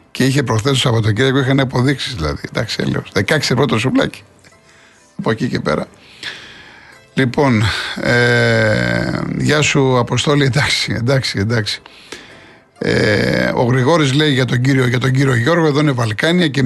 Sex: male